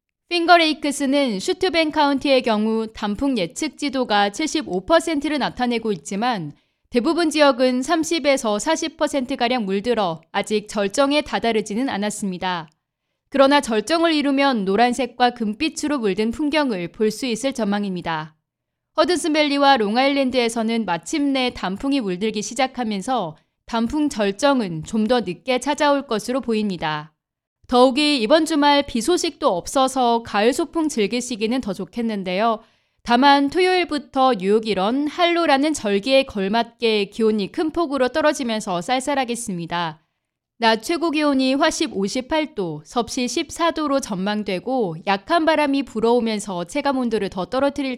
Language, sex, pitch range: Korean, female, 210-290 Hz